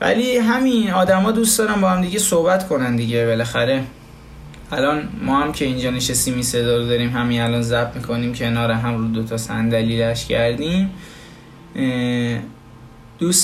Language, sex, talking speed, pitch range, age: Persian, male, 145 wpm, 125-170 Hz, 20-39